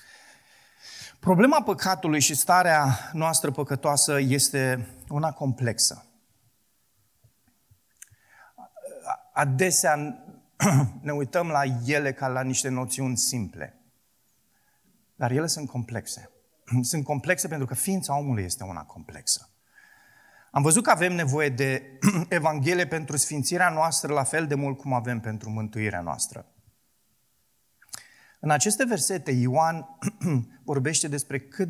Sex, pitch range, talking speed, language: male, 125-165 Hz, 110 wpm, Romanian